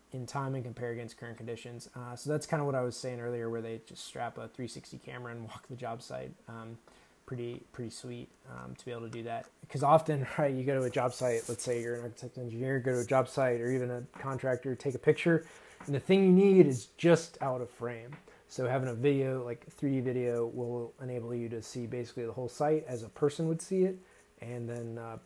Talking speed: 245 wpm